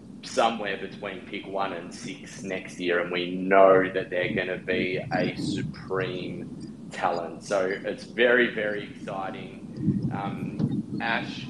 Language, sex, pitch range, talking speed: English, male, 95-110 Hz, 135 wpm